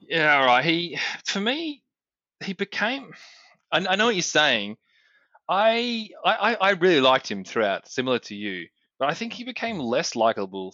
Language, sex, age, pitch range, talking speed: English, male, 20-39, 105-135 Hz, 170 wpm